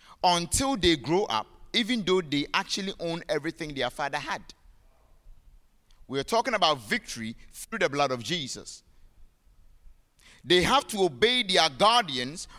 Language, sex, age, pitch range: English, male, 50-69, 145-205 Hz